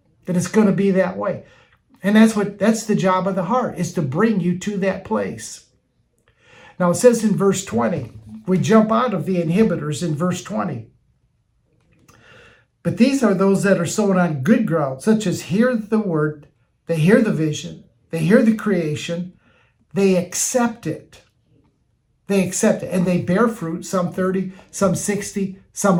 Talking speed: 175 wpm